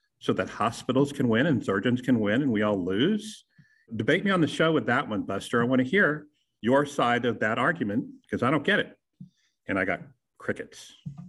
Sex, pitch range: male, 105-145 Hz